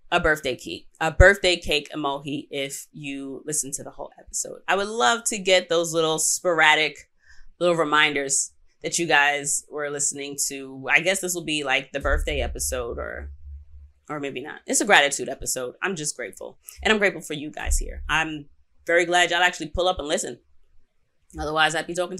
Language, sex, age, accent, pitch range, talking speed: English, female, 20-39, American, 140-185 Hz, 195 wpm